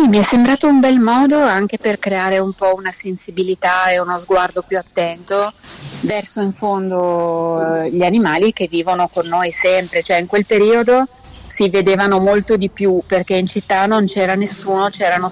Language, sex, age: Italian, female, 30-49